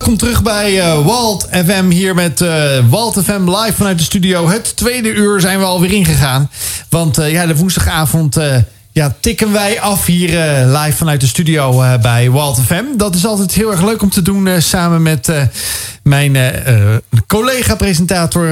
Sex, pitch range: male, 145-195 Hz